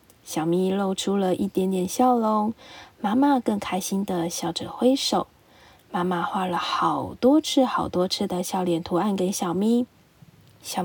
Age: 20-39